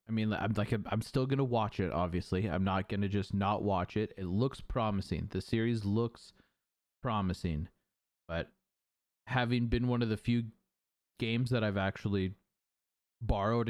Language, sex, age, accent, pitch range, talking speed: English, male, 20-39, American, 95-115 Hz, 160 wpm